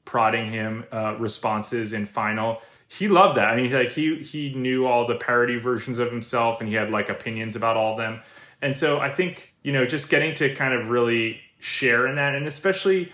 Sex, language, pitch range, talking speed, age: male, English, 105-125 Hz, 215 wpm, 20-39